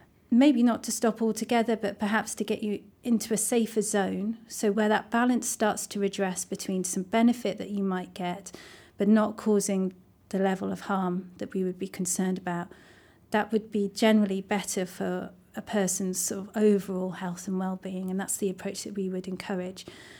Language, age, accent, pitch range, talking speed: English, 40-59, British, 195-220 Hz, 180 wpm